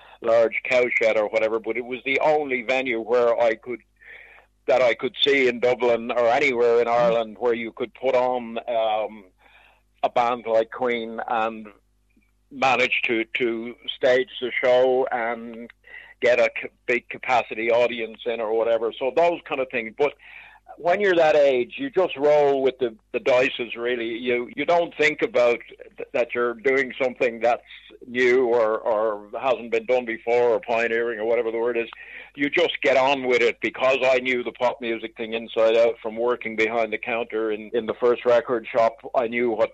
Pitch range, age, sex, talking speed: 115-135 Hz, 60-79, male, 185 wpm